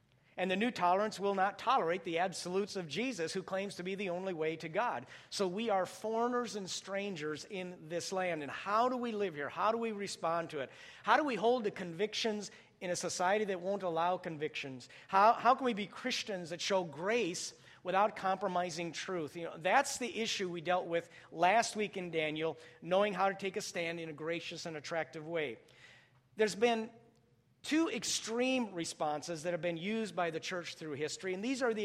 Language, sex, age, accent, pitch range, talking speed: English, male, 50-69, American, 165-205 Hz, 205 wpm